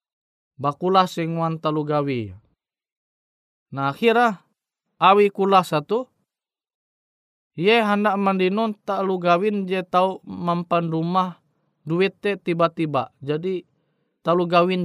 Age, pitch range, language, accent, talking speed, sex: 20-39, 140-185 Hz, Indonesian, native, 80 wpm, male